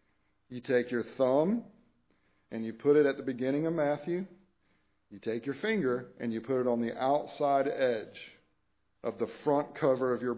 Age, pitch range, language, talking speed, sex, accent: 50-69, 100-130 Hz, English, 180 wpm, male, American